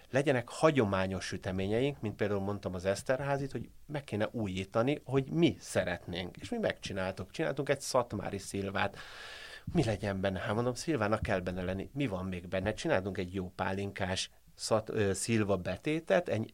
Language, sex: Hungarian, male